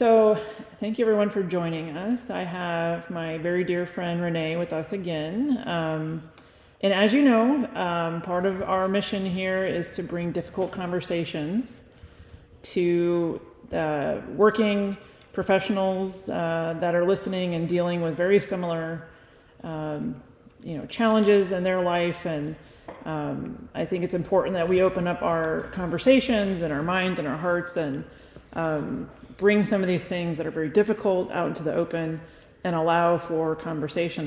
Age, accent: 30-49, American